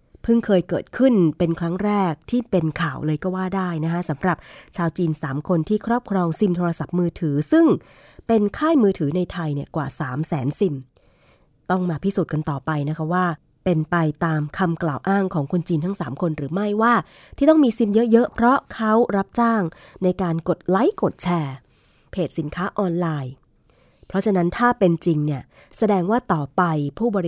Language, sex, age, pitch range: Thai, female, 20-39, 160-210 Hz